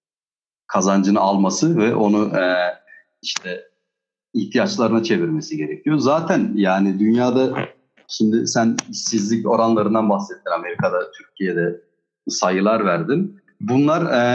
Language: Turkish